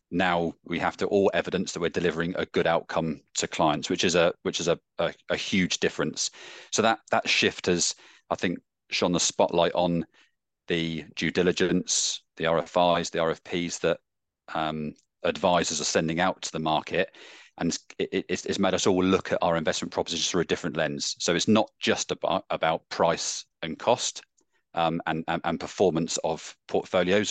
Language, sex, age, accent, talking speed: English, male, 30-49, British, 180 wpm